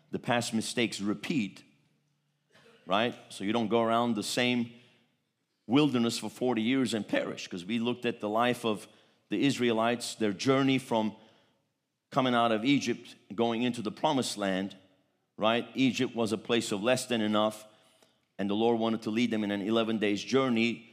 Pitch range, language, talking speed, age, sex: 110-140 Hz, English, 170 wpm, 50-69, male